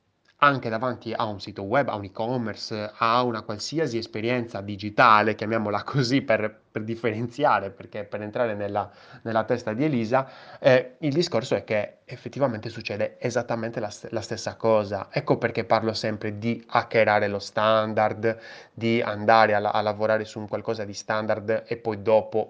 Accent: native